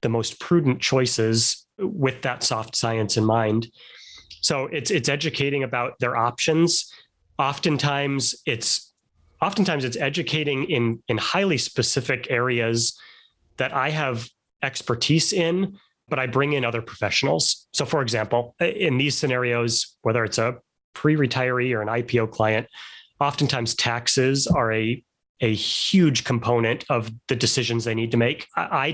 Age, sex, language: 30-49, male, English